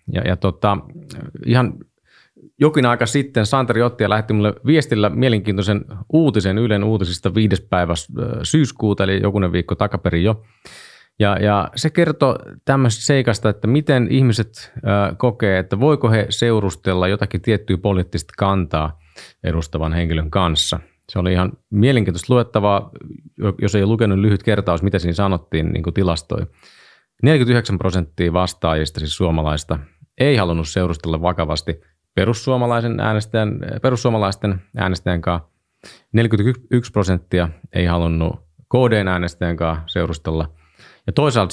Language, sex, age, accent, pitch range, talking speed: Finnish, male, 30-49, native, 85-115 Hz, 125 wpm